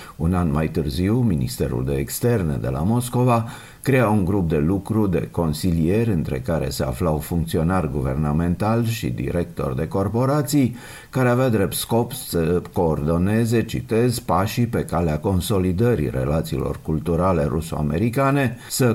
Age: 50-69